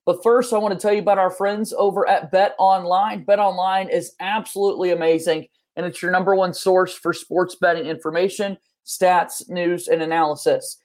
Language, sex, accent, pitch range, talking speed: English, male, American, 175-205 Hz, 185 wpm